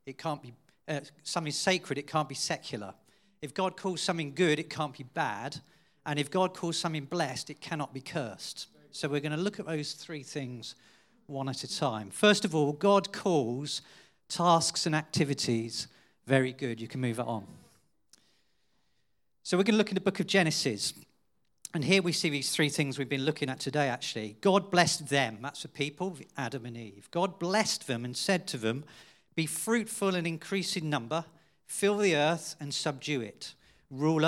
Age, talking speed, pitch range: 40-59, 190 wpm, 135-170 Hz